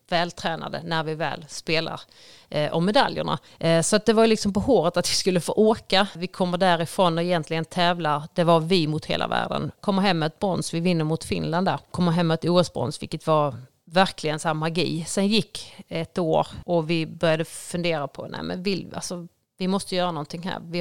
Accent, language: native, Swedish